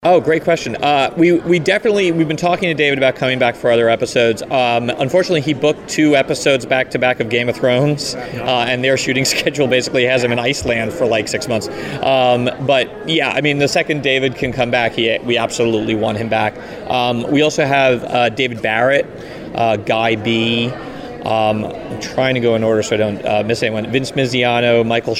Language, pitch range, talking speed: English, 110-130 Hz, 205 wpm